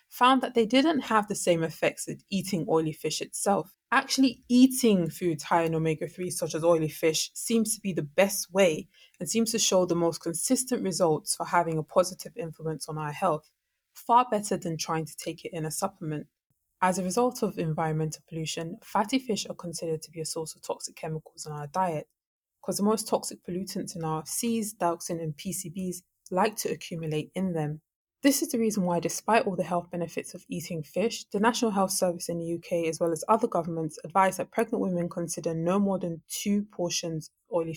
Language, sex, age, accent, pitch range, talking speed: English, female, 20-39, British, 160-210 Hz, 205 wpm